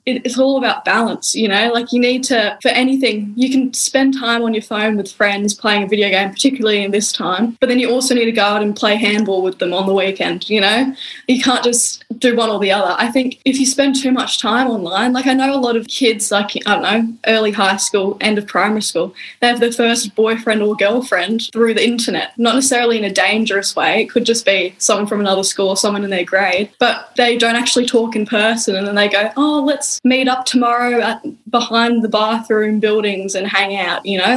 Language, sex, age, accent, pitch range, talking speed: English, female, 10-29, Australian, 210-250 Hz, 235 wpm